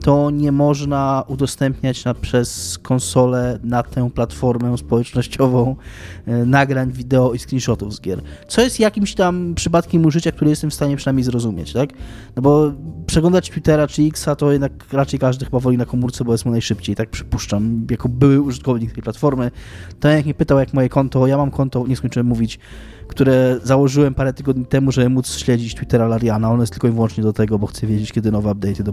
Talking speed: 195 wpm